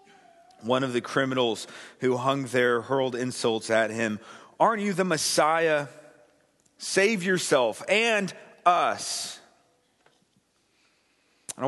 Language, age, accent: English, 40-59, American